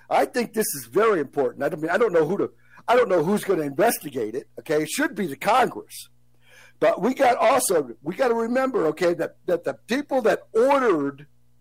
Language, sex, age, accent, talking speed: English, male, 60-79, American, 215 wpm